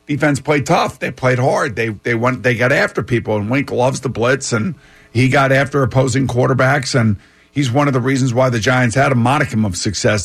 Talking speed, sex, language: 225 wpm, male, English